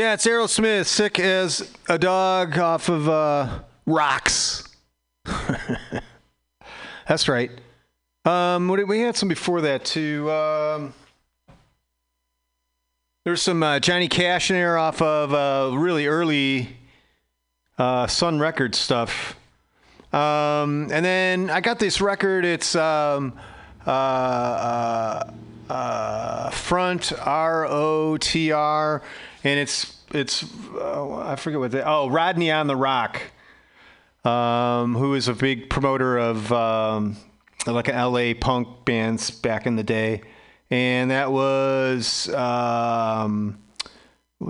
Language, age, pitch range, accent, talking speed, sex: English, 40-59, 115-170 Hz, American, 115 wpm, male